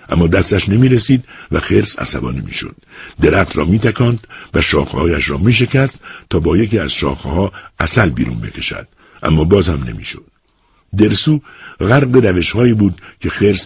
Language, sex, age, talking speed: Persian, male, 60-79, 165 wpm